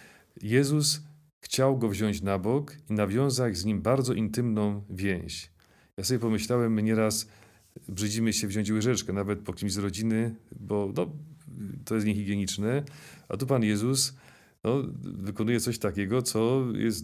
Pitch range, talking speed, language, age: 100-120 Hz, 150 wpm, Polish, 40-59